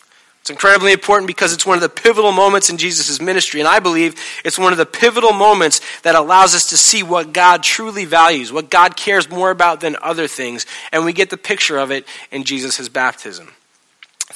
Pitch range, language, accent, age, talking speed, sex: 145-205 Hz, English, American, 30-49, 210 wpm, male